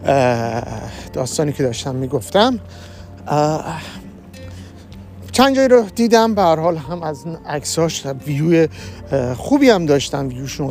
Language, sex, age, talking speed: Persian, male, 50-69, 95 wpm